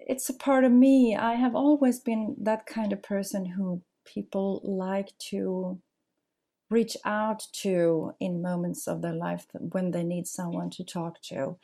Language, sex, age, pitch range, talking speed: English, female, 40-59, 180-225 Hz, 165 wpm